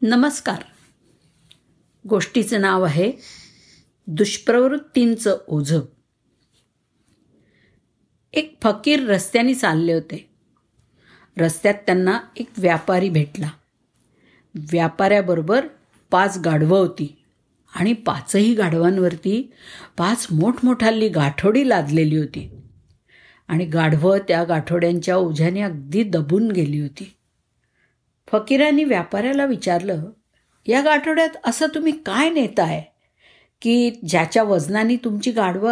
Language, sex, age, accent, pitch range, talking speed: Marathi, female, 50-69, native, 175-240 Hz, 85 wpm